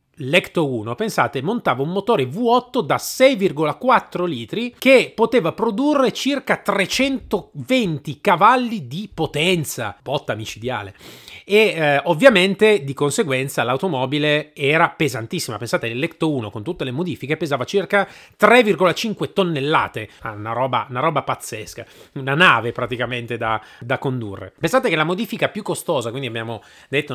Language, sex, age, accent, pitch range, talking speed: Italian, male, 30-49, native, 125-200 Hz, 130 wpm